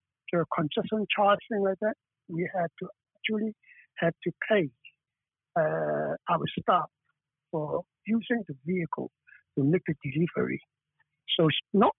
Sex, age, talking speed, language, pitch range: male, 60-79, 125 wpm, English, 155-205 Hz